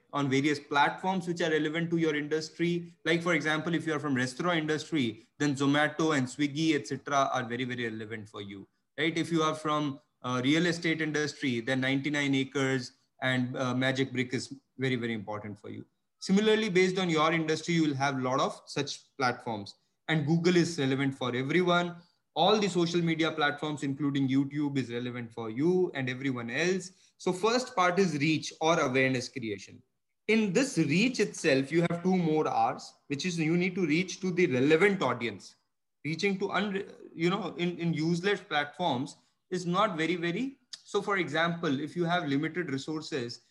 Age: 20-39